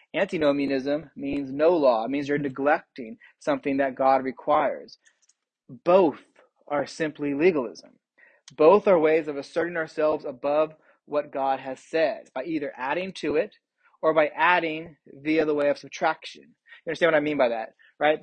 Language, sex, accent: English, male, American